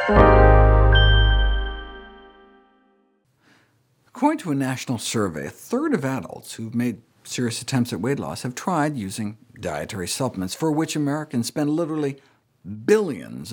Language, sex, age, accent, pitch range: English, male, 50-69, American, 105-135 Hz